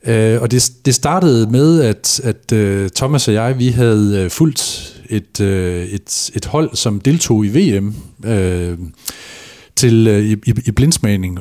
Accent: native